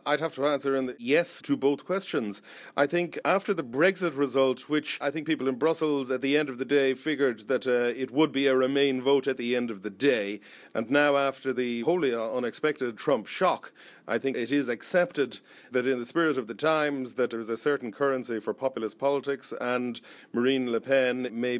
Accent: Irish